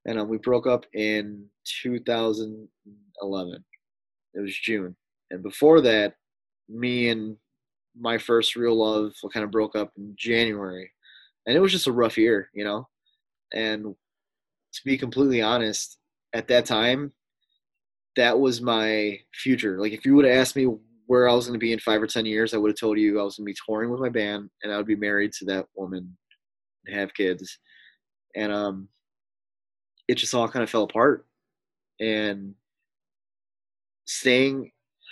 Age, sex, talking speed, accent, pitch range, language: 20-39, male, 170 wpm, American, 105-120 Hz, English